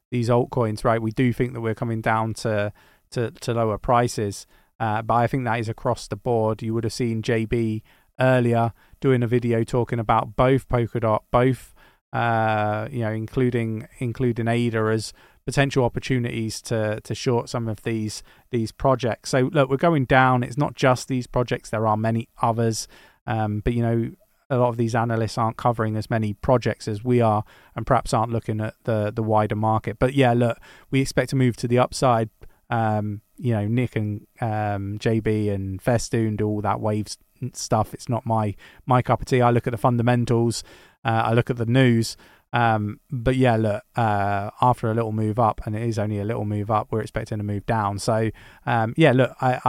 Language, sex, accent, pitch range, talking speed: English, male, British, 110-125 Hz, 200 wpm